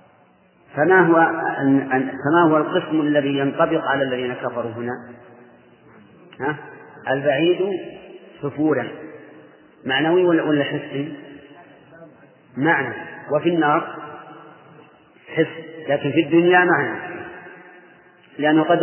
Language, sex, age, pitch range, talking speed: English, male, 40-59, 140-155 Hz, 80 wpm